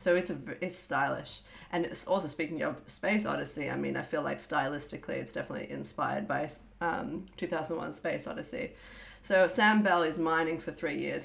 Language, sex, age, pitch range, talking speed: English, female, 30-49, 160-205 Hz, 190 wpm